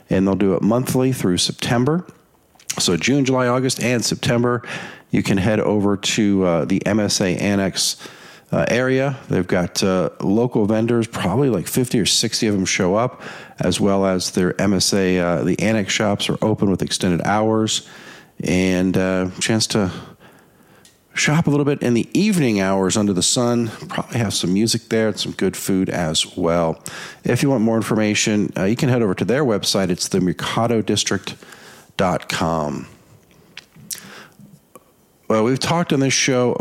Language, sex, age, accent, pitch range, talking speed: English, male, 50-69, American, 95-120 Hz, 160 wpm